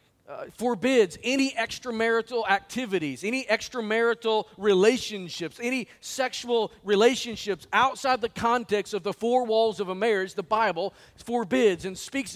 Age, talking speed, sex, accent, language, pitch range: 40-59, 125 wpm, male, American, English, 195-250 Hz